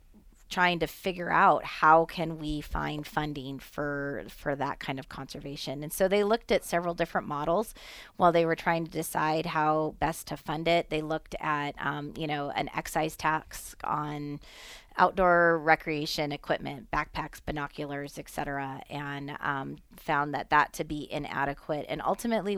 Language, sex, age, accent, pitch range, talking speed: English, female, 30-49, American, 145-165 Hz, 160 wpm